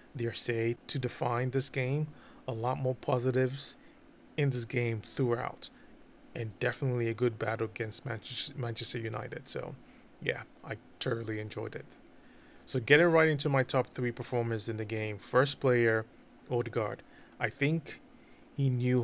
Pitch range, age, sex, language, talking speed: 115-130 Hz, 20-39, male, English, 145 wpm